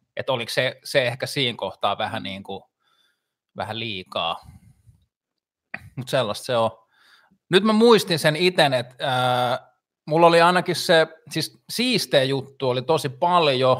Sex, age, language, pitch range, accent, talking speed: male, 20-39, Finnish, 110-150 Hz, native, 130 wpm